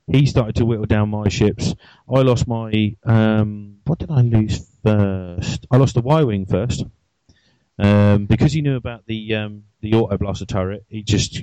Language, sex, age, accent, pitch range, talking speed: English, male, 30-49, British, 105-120 Hz, 185 wpm